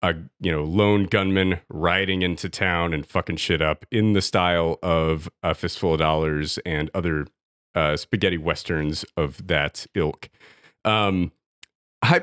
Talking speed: 145 wpm